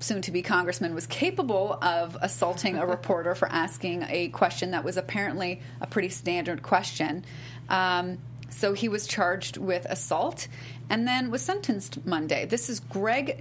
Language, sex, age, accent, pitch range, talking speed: English, female, 30-49, American, 145-220 Hz, 150 wpm